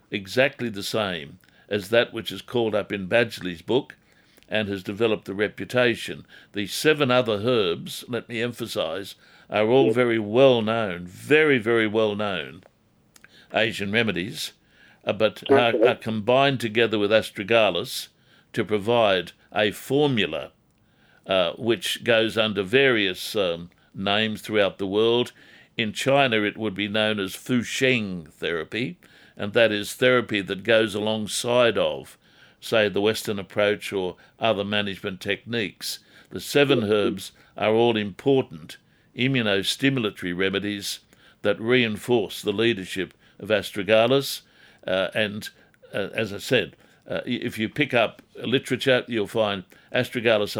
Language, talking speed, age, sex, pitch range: English, 135 wpm, 60-79, male, 105-120 Hz